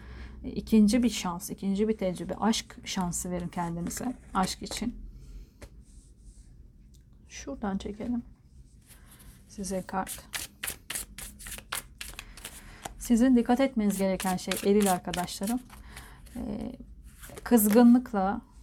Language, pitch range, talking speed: Turkish, 180-220 Hz, 75 wpm